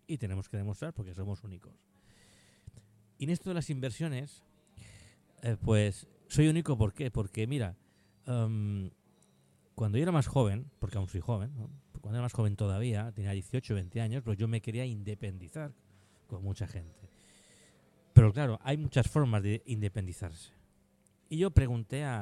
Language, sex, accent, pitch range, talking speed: Spanish, male, Spanish, 100-125 Hz, 160 wpm